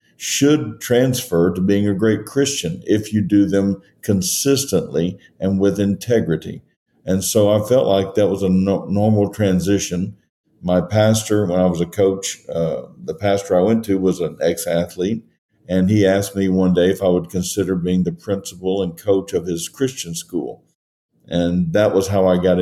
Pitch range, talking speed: 90-100 Hz, 180 wpm